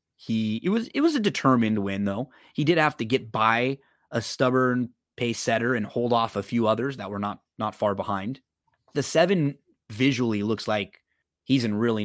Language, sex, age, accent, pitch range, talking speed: English, male, 30-49, American, 105-125 Hz, 195 wpm